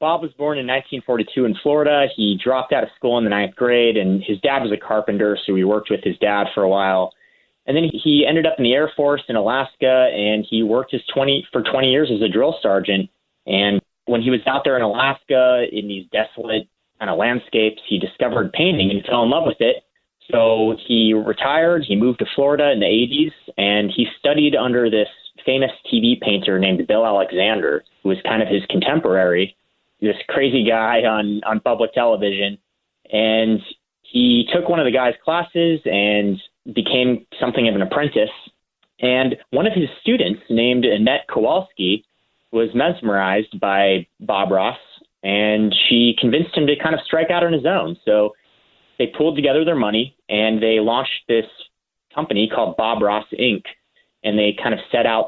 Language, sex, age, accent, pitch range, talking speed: English, male, 30-49, American, 105-135 Hz, 185 wpm